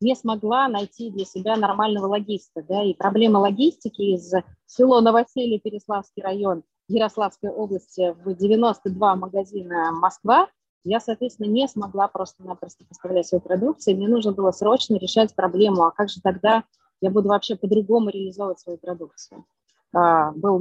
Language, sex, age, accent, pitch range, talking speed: Russian, female, 20-39, native, 185-225 Hz, 145 wpm